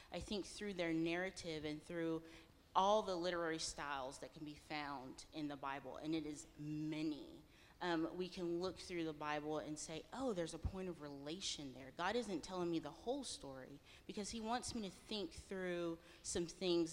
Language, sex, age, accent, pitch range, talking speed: English, female, 30-49, American, 155-185 Hz, 190 wpm